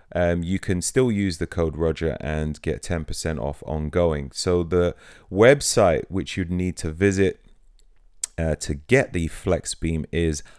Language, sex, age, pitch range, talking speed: English, male, 30-49, 80-100 Hz, 155 wpm